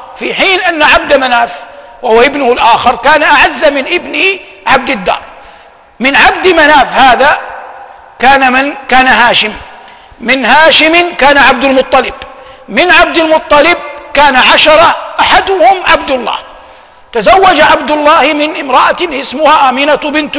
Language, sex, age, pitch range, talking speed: Arabic, male, 50-69, 270-325 Hz, 125 wpm